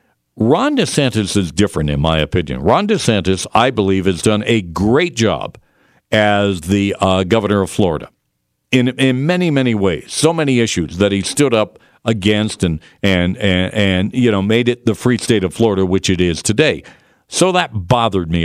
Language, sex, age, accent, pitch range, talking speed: English, male, 50-69, American, 95-120 Hz, 180 wpm